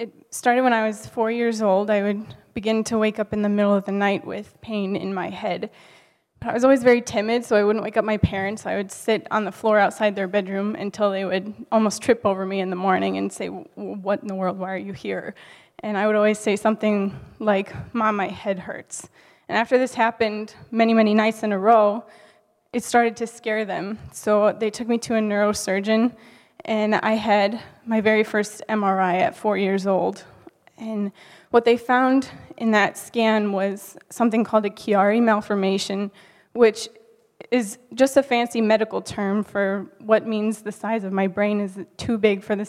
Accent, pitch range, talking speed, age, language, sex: American, 200-225 Hz, 200 wpm, 10-29, English, female